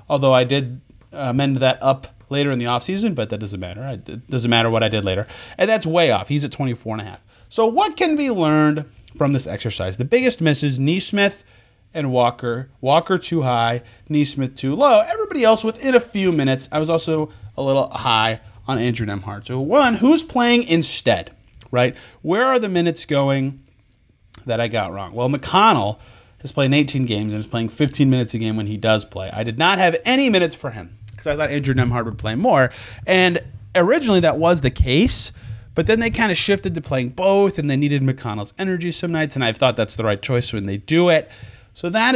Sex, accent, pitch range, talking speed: male, American, 115-165 Hz, 215 wpm